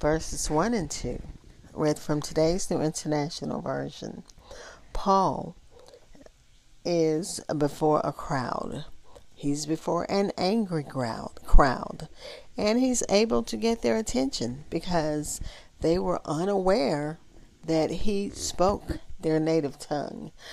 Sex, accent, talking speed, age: female, American, 110 wpm, 40-59